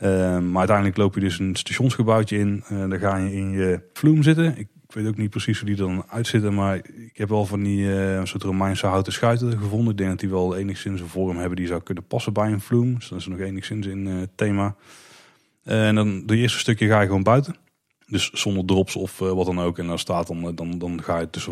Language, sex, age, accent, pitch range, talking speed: Dutch, male, 30-49, Dutch, 90-105 Hz, 250 wpm